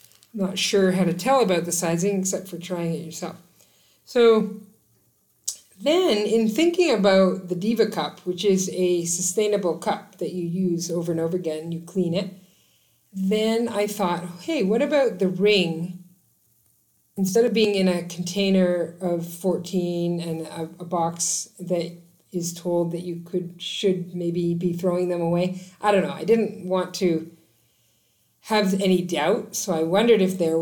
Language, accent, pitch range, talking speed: English, American, 170-200 Hz, 165 wpm